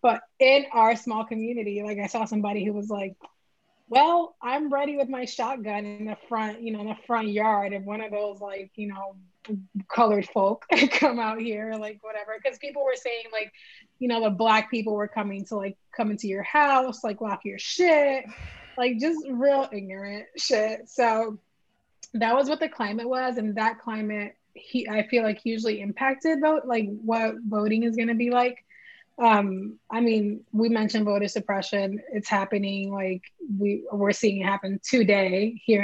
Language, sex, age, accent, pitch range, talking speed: English, female, 20-39, American, 210-270 Hz, 185 wpm